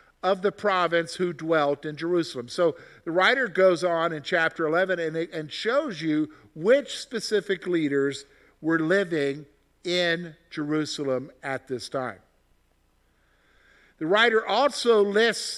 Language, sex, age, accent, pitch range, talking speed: English, male, 50-69, American, 160-210 Hz, 125 wpm